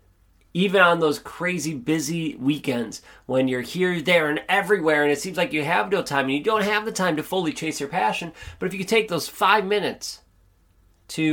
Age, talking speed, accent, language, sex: 30-49, 205 wpm, American, English, male